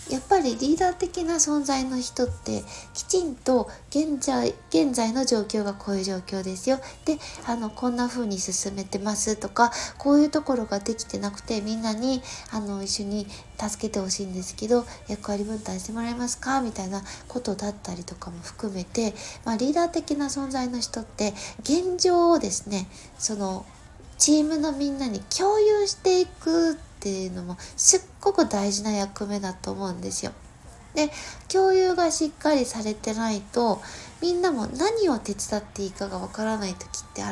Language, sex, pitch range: Japanese, female, 205-300 Hz